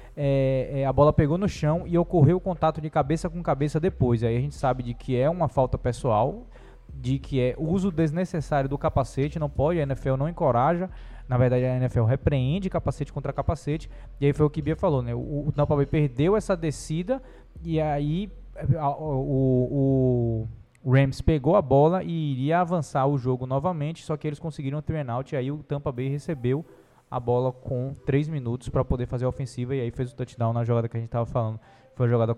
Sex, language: male, Portuguese